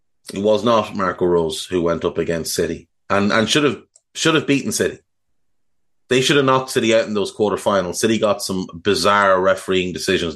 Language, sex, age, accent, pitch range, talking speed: English, male, 30-49, Irish, 105-140 Hz, 190 wpm